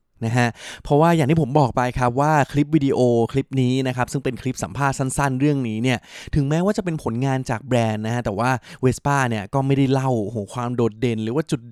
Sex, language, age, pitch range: male, Thai, 20-39, 115-145 Hz